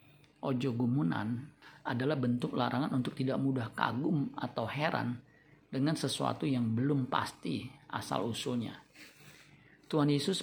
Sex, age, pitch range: male, 50-69, 125-145 Hz